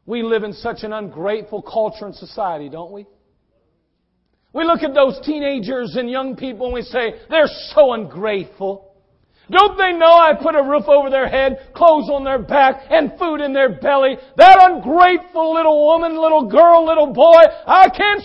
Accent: American